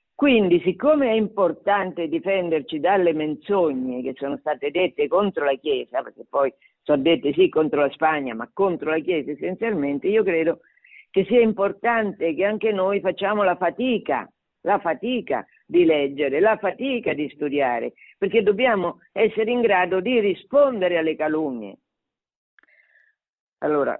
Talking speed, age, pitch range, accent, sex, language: 140 wpm, 50-69, 150-225 Hz, native, female, Italian